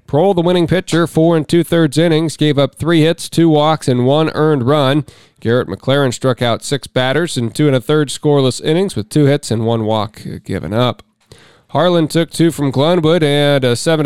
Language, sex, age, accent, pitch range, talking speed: English, male, 40-59, American, 125-150 Hz, 200 wpm